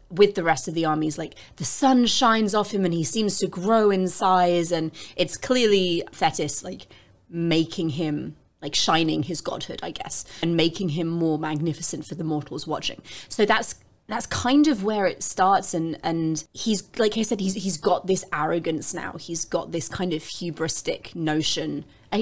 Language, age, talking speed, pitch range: English, 30-49, 185 wpm, 160-195 Hz